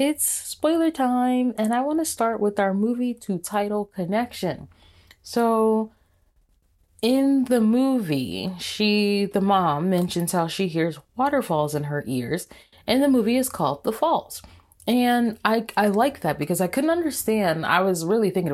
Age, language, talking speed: 20-39, English, 160 wpm